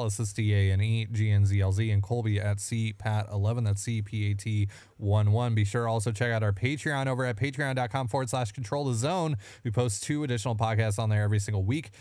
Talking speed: 240 wpm